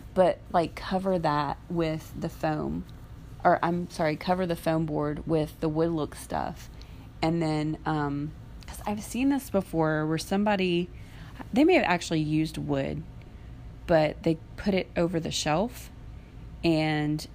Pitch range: 150-175 Hz